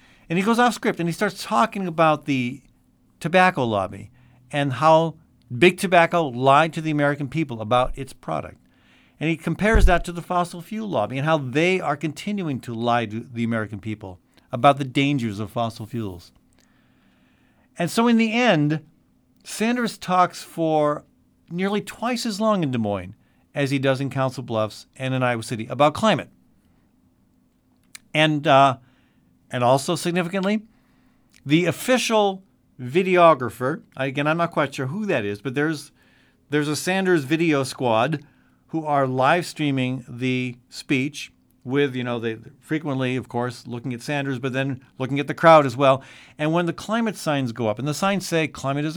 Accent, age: American, 50-69